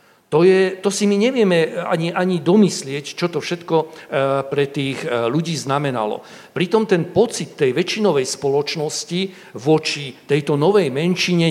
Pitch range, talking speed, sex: 135-190 Hz, 135 wpm, male